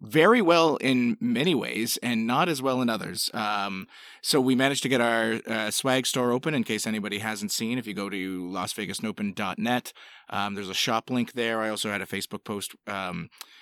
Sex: male